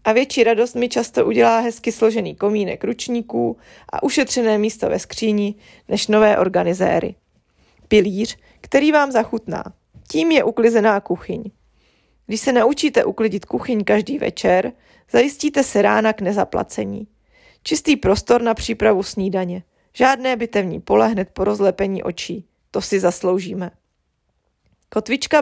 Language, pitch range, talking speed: Czech, 195-240 Hz, 125 wpm